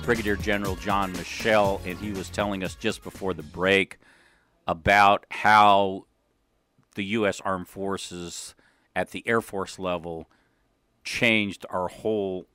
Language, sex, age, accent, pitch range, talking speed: English, male, 50-69, American, 95-105 Hz, 130 wpm